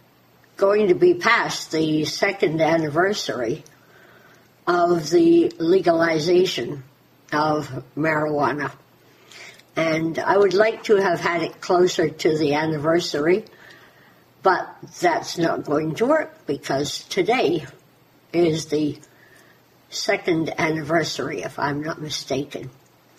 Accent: American